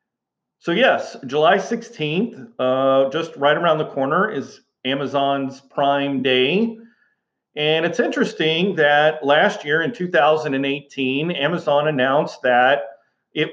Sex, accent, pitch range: male, American, 135-165 Hz